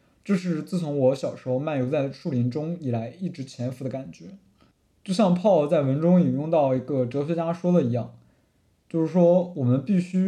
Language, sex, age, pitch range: Chinese, male, 20-39, 130-175 Hz